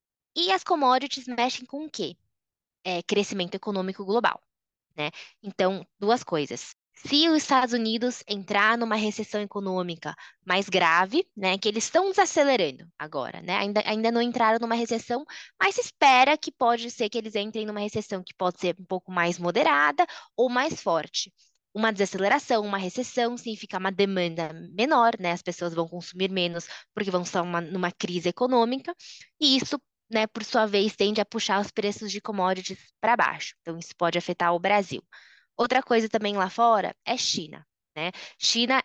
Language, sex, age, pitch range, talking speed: Portuguese, female, 10-29, 185-245 Hz, 165 wpm